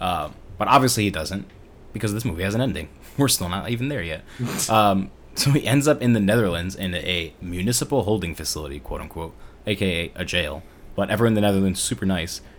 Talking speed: 200 wpm